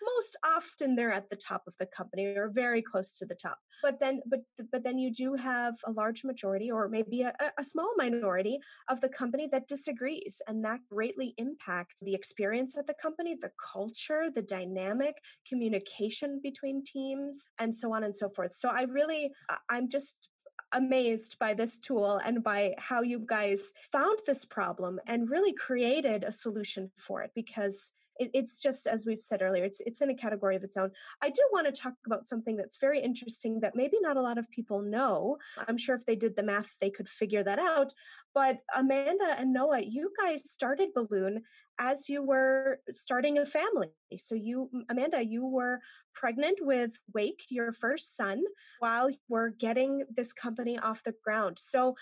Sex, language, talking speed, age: female, English, 190 wpm, 20-39